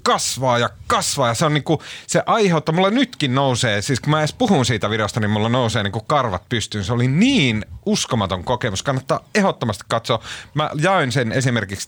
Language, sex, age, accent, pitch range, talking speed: Finnish, male, 30-49, native, 110-145 Hz, 195 wpm